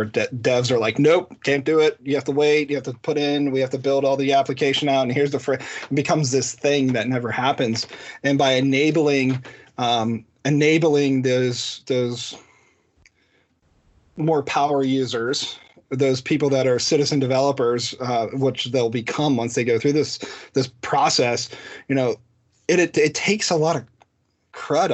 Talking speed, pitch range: 170 wpm, 120-145 Hz